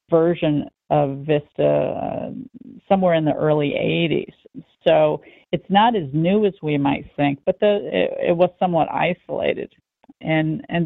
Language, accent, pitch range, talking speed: English, American, 150-175 Hz, 145 wpm